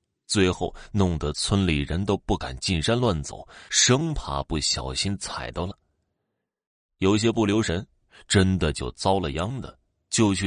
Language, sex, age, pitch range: Chinese, male, 30-49, 85-130 Hz